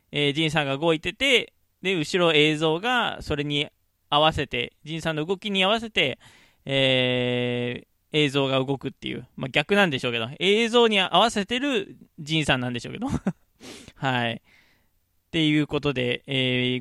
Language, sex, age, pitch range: Japanese, male, 20-39, 125-170 Hz